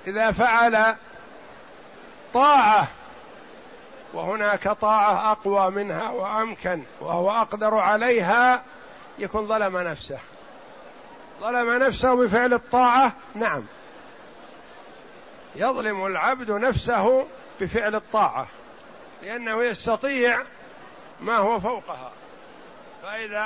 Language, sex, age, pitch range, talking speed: Arabic, male, 50-69, 200-240 Hz, 75 wpm